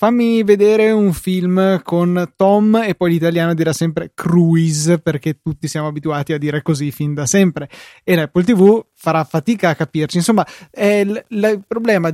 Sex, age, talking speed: male, 20-39, 165 wpm